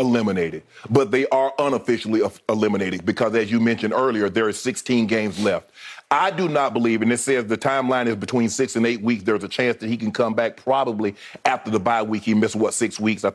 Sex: male